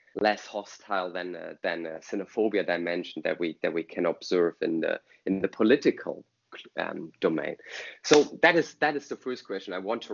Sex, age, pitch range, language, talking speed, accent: male, 20-39, 100-130 Hz, English, 195 wpm, German